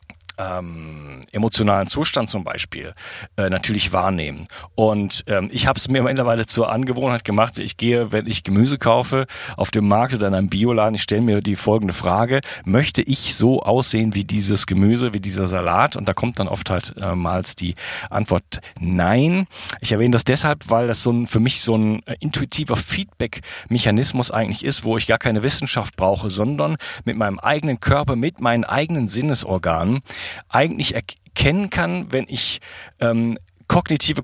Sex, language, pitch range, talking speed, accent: male, German, 105-130 Hz, 170 wpm, German